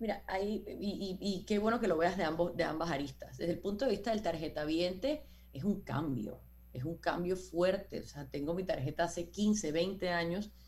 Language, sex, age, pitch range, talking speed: Spanish, female, 30-49, 170-220 Hz, 215 wpm